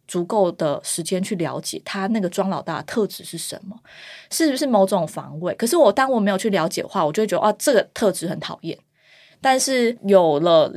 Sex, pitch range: female, 175-220 Hz